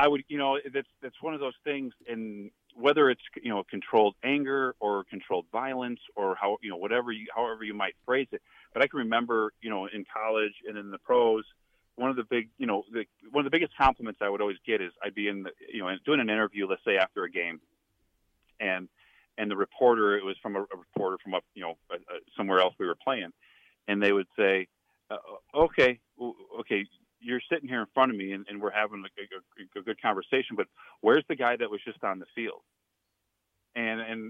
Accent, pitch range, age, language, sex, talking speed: American, 100-130 Hz, 40-59, English, male, 230 wpm